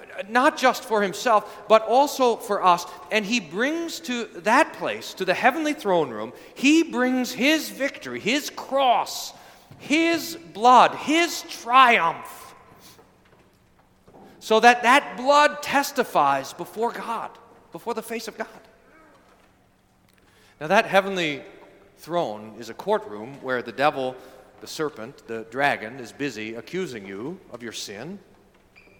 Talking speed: 130 wpm